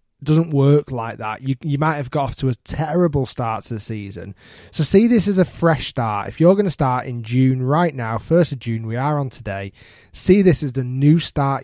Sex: male